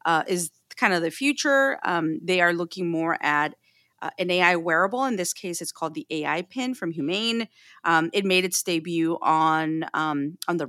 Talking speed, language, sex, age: 195 wpm, English, female, 30-49